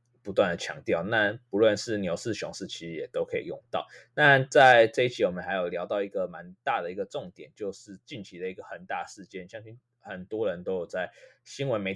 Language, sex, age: Chinese, male, 20-39